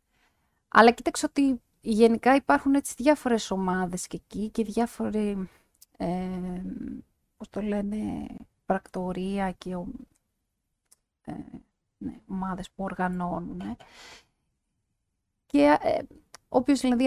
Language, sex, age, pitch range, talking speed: Greek, female, 30-49, 180-235 Hz, 95 wpm